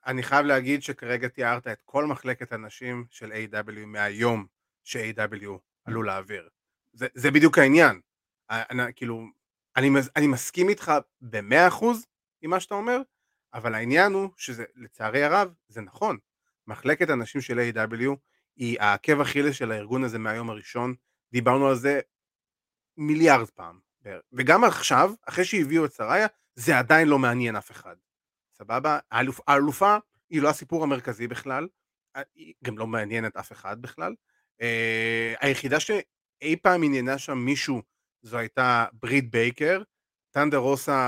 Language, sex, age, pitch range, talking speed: Hebrew, male, 30-49, 115-150 Hz, 135 wpm